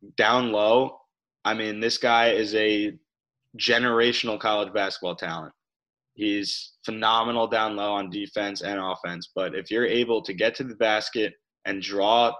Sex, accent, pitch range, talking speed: male, American, 100-120 Hz, 150 wpm